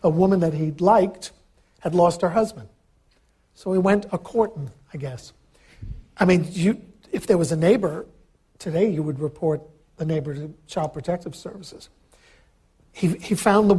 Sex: male